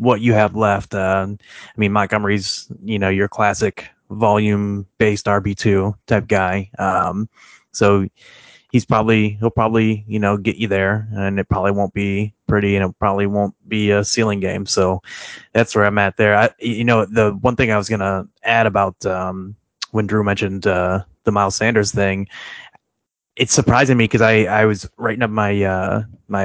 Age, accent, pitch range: 20-39, American, 100-110 Hz